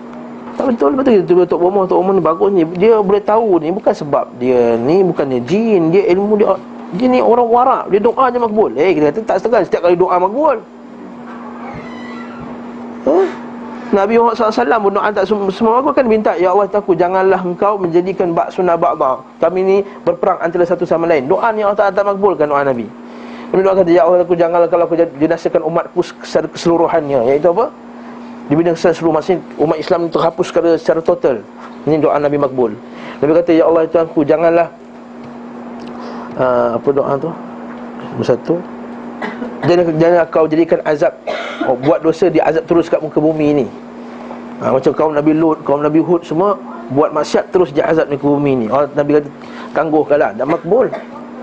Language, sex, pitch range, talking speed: Malay, male, 155-200 Hz, 175 wpm